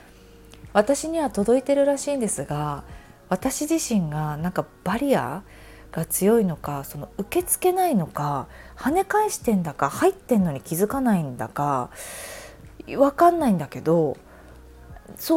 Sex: female